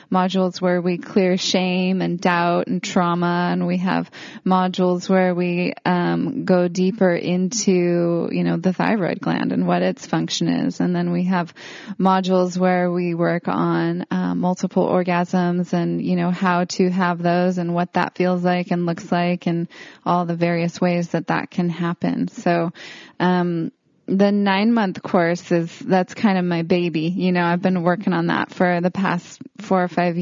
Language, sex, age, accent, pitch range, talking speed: English, female, 20-39, American, 175-190 Hz, 180 wpm